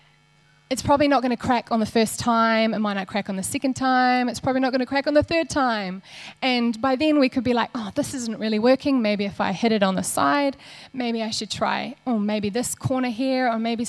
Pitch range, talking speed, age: 195-245 Hz, 245 wpm, 20-39